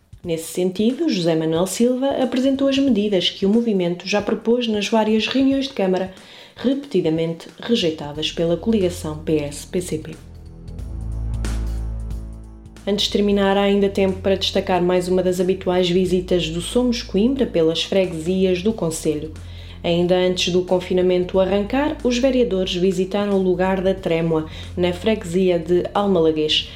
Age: 20-39